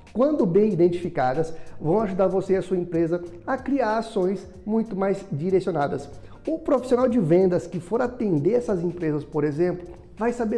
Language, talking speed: Portuguese, 165 wpm